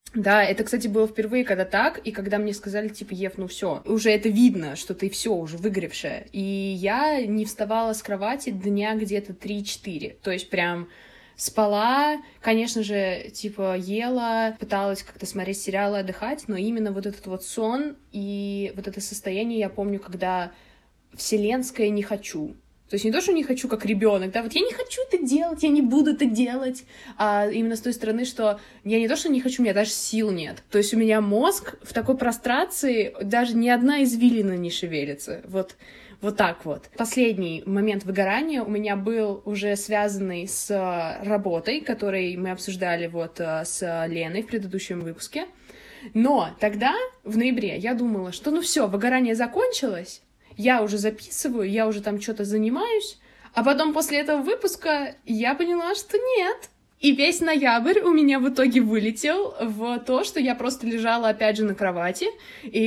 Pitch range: 200-255 Hz